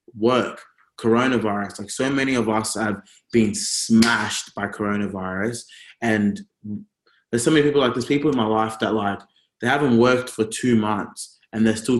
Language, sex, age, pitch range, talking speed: English, male, 20-39, 110-145 Hz, 170 wpm